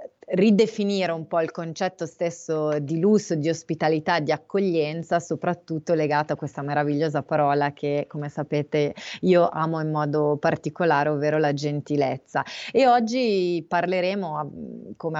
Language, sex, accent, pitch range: Italian, female, native, 145-170 Hz